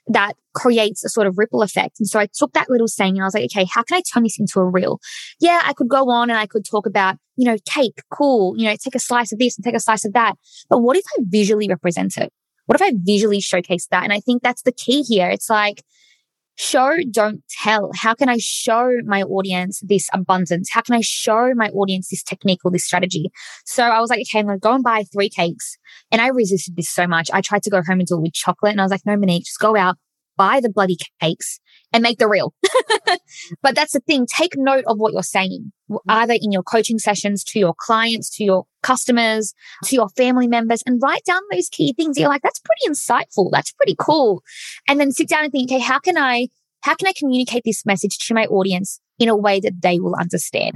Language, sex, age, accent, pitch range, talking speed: English, female, 20-39, Australian, 195-255 Hz, 245 wpm